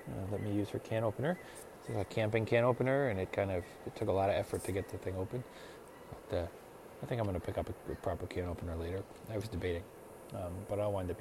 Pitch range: 100-135 Hz